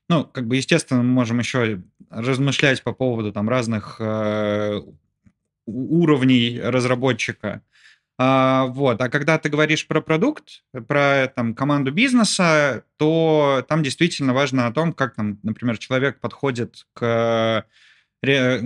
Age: 20-39